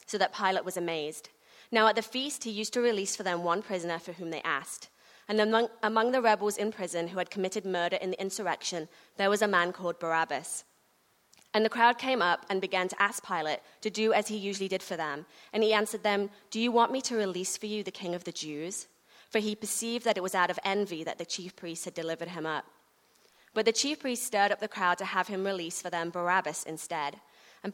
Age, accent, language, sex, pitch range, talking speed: 30-49, British, English, female, 175-215 Hz, 240 wpm